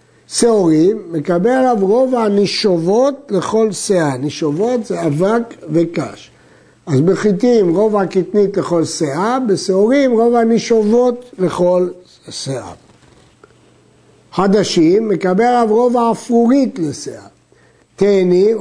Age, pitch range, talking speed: 60-79, 180-240 Hz, 95 wpm